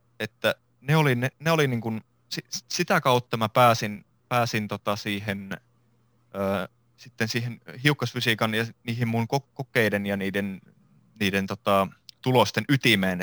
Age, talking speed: 30-49, 130 wpm